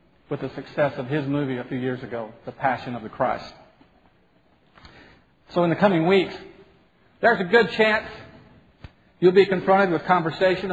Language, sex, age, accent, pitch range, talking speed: English, male, 50-69, American, 145-190 Hz, 160 wpm